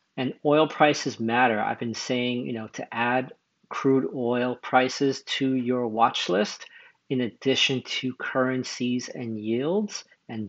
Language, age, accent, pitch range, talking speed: English, 40-59, American, 125-150 Hz, 145 wpm